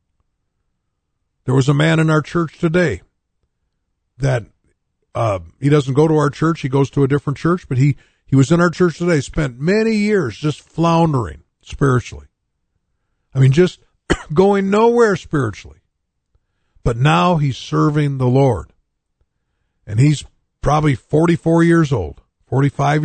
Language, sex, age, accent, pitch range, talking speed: English, male, 50-69, American, 100-160 Hz, 145 wpm